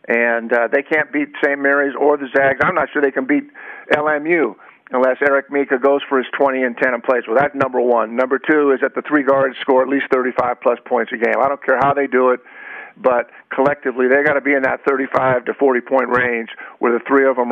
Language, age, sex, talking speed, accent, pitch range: English, 50-69, male, 245 wpm, American, 130-160 Hz